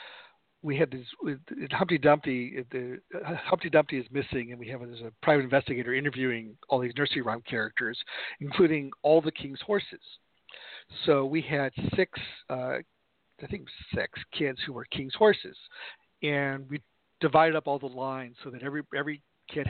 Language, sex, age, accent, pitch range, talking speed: English, male, 50-69, American, 130-160 Hz, 160 wpm